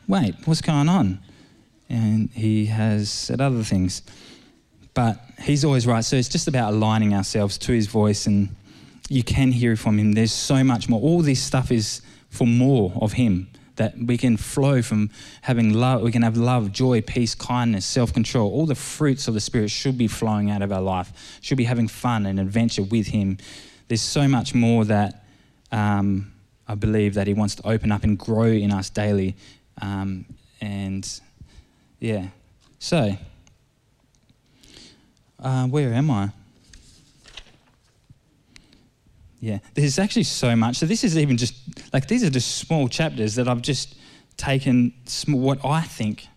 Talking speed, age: 165 wpm, 20-39